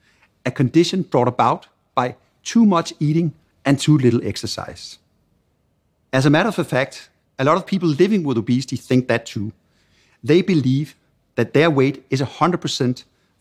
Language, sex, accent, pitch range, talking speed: English, male, Danish, 120-155 Hz, 150 wpm